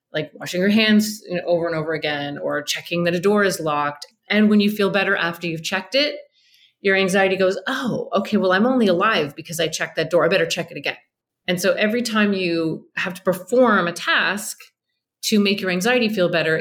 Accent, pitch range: American, 160-195 Hz